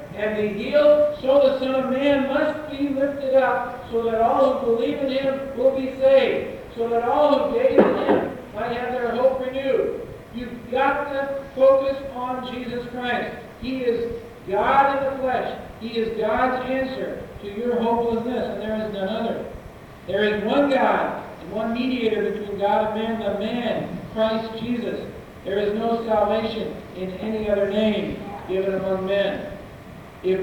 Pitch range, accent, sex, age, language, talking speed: 195-245 Hz, American, male, 50-69, English, 170 wpm